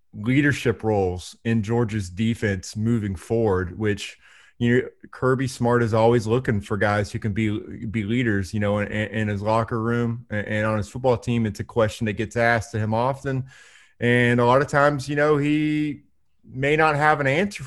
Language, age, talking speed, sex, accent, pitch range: English, 30-49, 190 wpm, male, American, 115-140 Hz